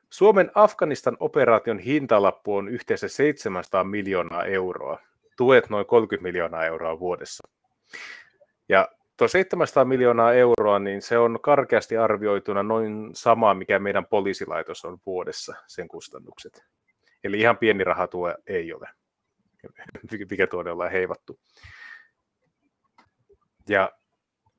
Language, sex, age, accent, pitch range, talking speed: Finnish, male, 30-49, native, 100-140 Hz, 105 wpm